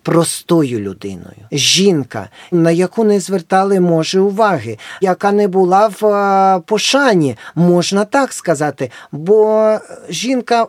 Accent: native